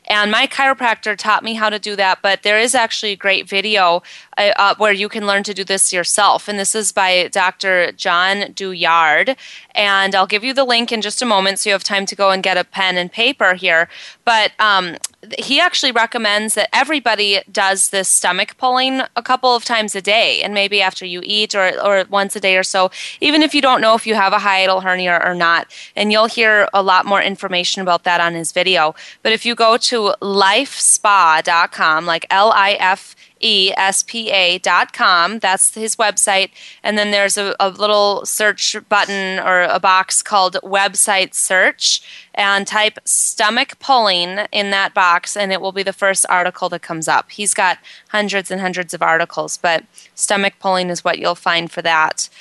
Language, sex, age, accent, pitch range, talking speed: English, female, 20-39, American, 185-215 Hz, 195 wpm